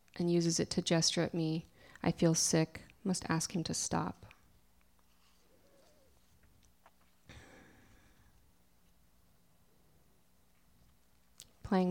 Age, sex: 20-39, female